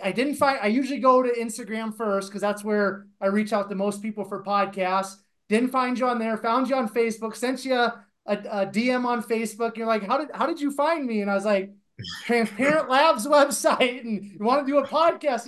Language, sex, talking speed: English, male, 235 wpm